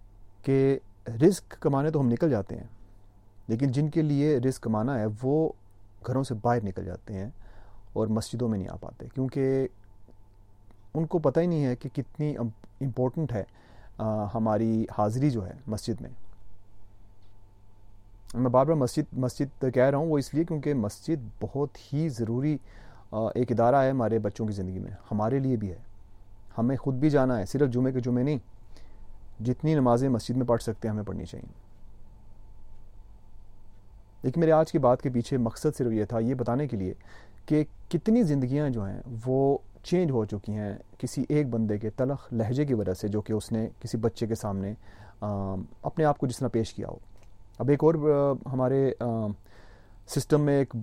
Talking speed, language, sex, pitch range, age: 175 wpm, Urdu, male, 100-135 Hz, 30-49